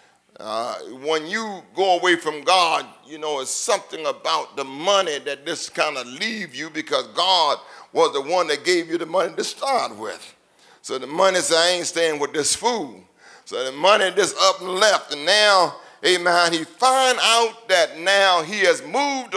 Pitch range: 180-255 Hz